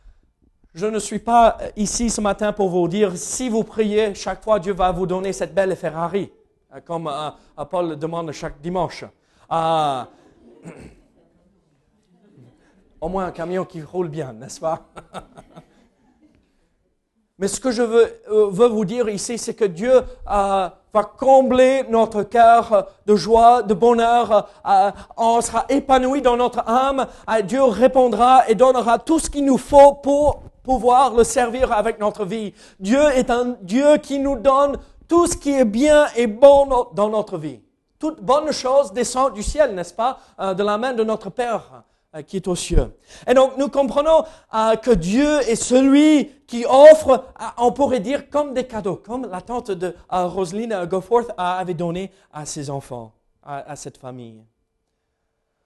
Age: 40-59